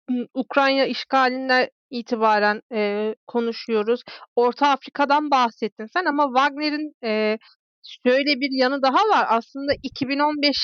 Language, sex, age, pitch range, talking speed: Turkish, female, 40-59, 240-290 Hz, 105 wpm